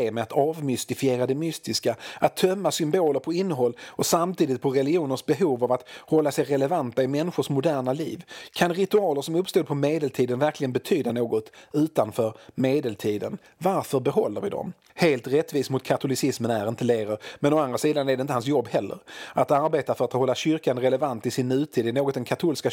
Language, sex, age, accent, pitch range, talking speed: Swedish, male, 40-59, native, 115-145 Hz, 185 wpm